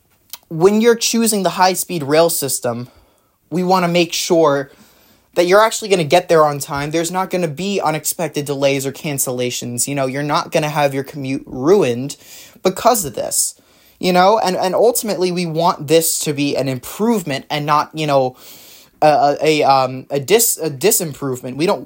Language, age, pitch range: English, 20-39, 140-175 Hz